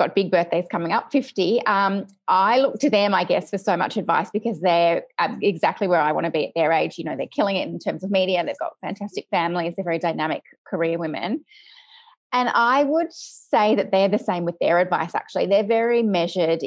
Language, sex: English, female